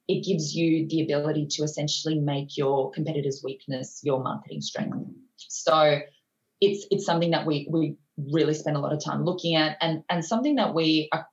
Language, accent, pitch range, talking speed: English, Australian, 145-175 Hz, 185 wpm